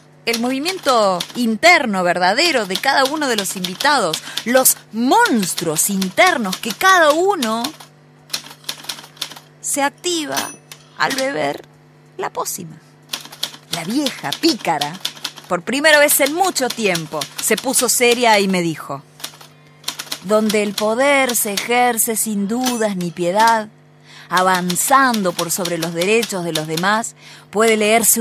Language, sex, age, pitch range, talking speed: Spanish, female, 20-39, 175-240 Hz, 120 wpm